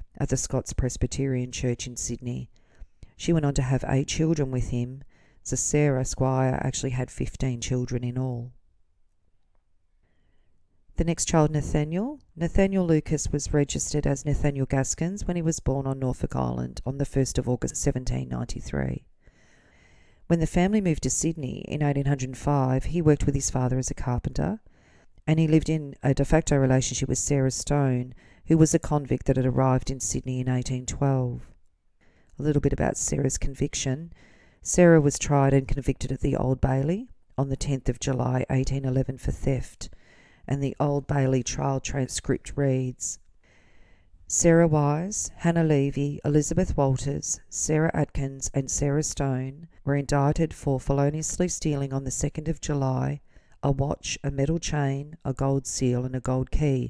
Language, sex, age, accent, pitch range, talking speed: English, female, 40-59, Australian, 125-145 Hz, 160 wpm